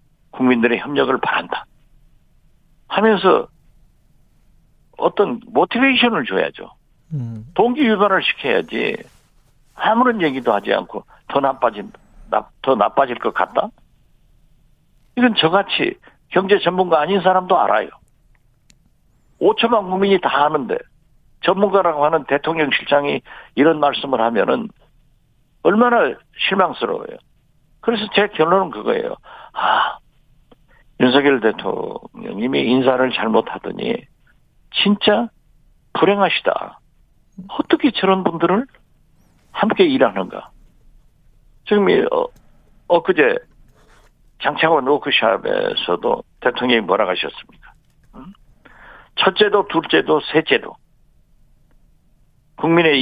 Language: Korean